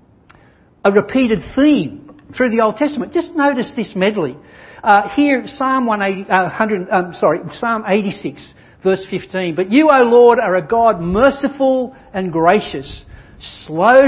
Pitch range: 155-220 Hz